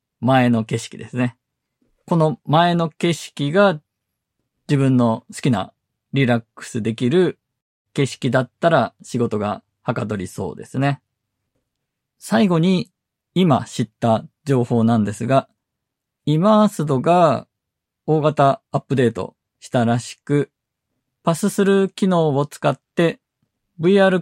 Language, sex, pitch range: Japanese, male, 125-170 Hz